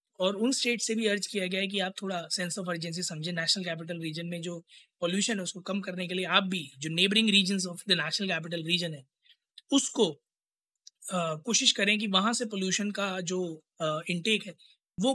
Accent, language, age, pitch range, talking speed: native, Hindi, 20-39, 185-225 Hz, 205 wpm